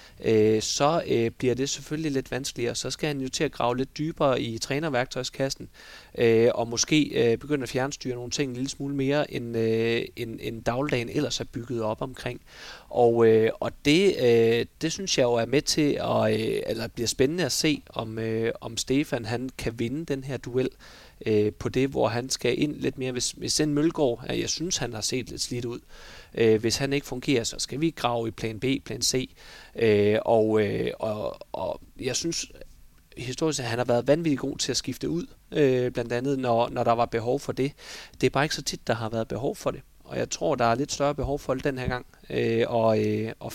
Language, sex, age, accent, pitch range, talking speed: Danish, male, 30-49, native, 115-145 Hz, 215 wpm